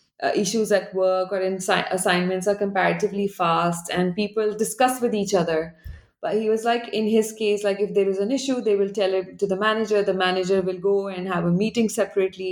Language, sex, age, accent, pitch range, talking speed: English, female, 20-39, Indian, 180-215 Hz, 215 wpm